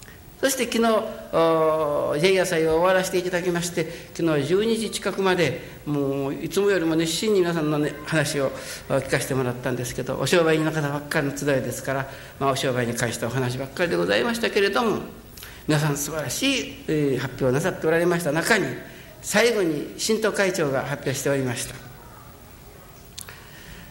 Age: 60-79